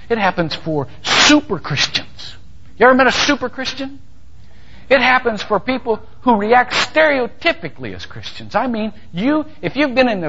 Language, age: English, 60-79